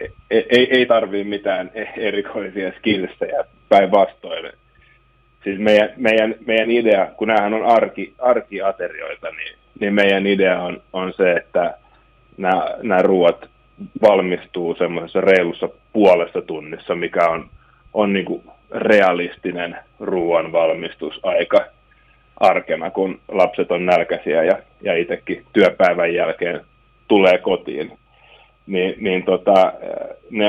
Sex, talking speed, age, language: male, 110 wpm, 30-49, Finnish